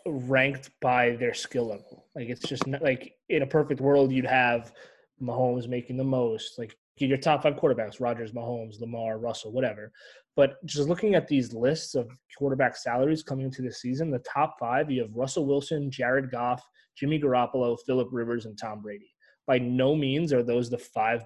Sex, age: male, 20-39